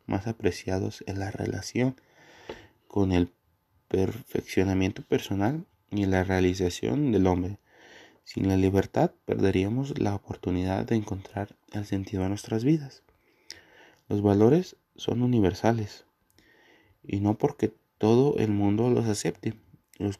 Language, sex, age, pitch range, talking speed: Spanish, male, 30-49, 95-115 Hz, 120 wpm